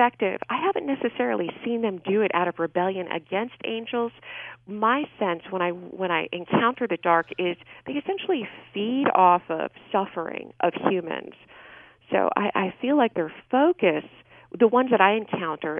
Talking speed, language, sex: 160 wpm, English, female